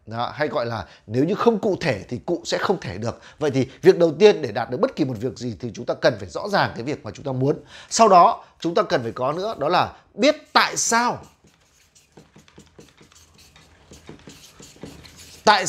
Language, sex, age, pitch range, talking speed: Vietnamese, male, 30-49, 130-210 Hz, 205 wpm